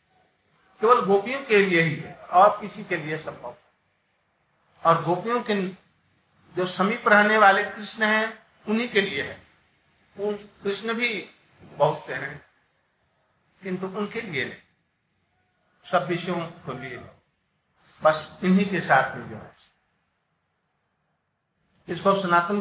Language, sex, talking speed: Hindi, male, 115 wpm